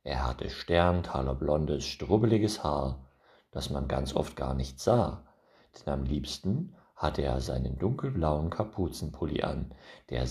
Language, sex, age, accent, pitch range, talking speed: German, male, 50-69, German, 70-115 Hz, 135 wpm